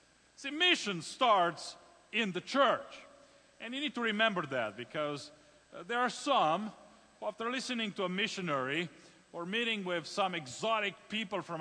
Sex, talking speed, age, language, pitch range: male, 155 wpm, 40-59, English, 185-300 Hz